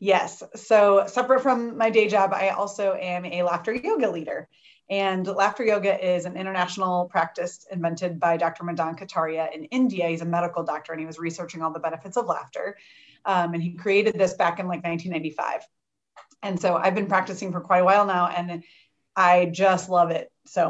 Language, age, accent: English, 30-49, American